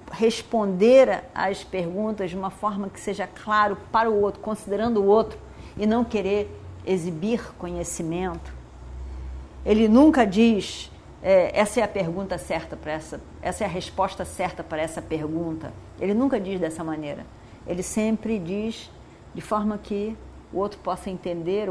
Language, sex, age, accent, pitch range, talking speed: Portuguese, female, 50-69, Brazilian, 175-210 Hz, 150 wpm